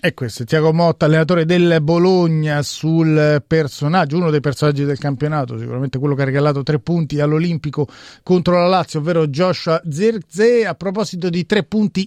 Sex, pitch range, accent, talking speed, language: male, 145-175 Hz, native, 160 wpm, Italian